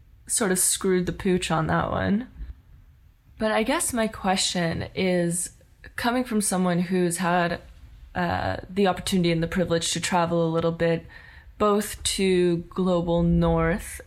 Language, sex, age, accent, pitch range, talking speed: English, female, 20-39, American, 170-200 Hz, 145 wpm